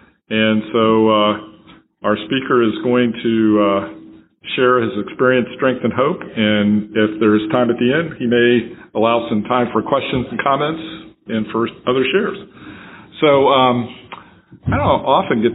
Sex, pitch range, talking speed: male, 110-130 Hz, 160 wpm